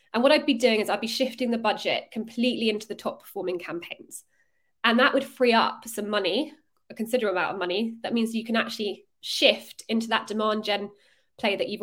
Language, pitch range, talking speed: English, 200-250 Hz, 215 wpm